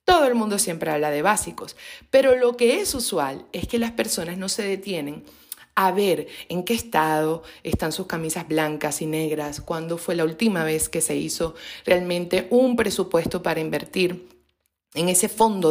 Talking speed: 175 wpm